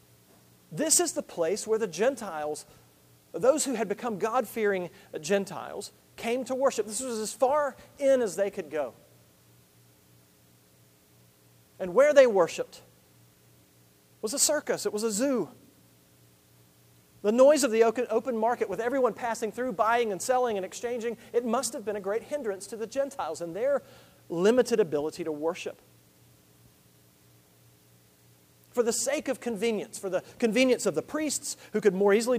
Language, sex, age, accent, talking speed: English, male, 40-59, American, 150 wpm